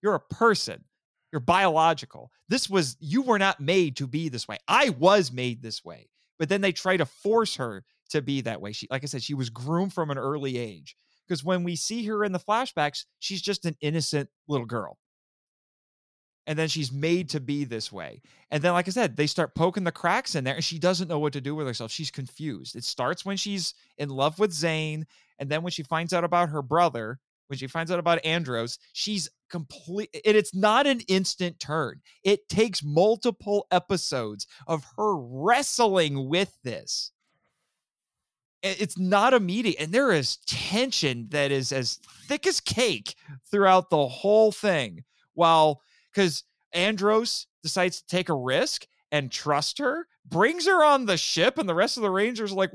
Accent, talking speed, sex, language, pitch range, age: American, 190 wpm, male, English, 145-200 Hz, 30-49